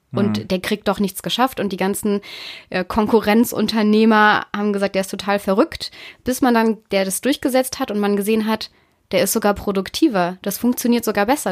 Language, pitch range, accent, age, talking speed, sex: German, 190-225 Hz, German, 20-39, 190 wpm, female